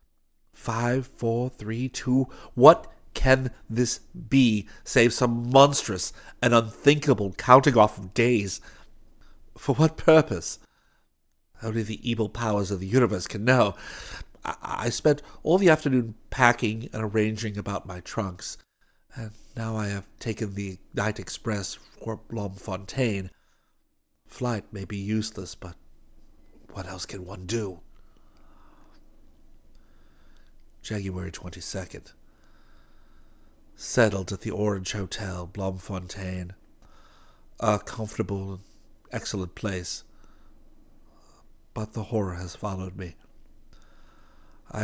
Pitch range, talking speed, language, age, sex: 95-115 Hz, 105 wpm, English, 50-69, male